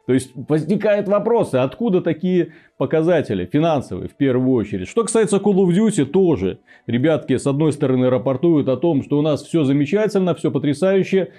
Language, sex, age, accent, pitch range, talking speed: Russian, male, 30-49, native, 120-175 Hz, 165 wpm